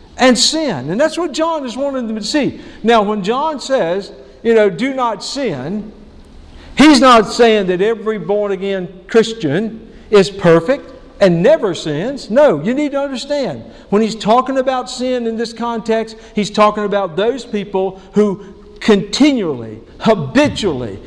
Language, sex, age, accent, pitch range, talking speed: English, male, 50-69, American, 200-250 Hz, 150 wpm